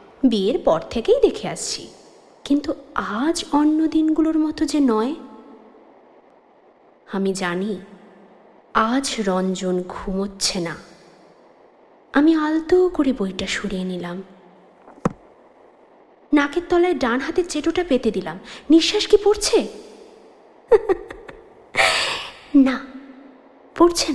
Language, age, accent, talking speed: Bengali, 20-39, native, 90 wpm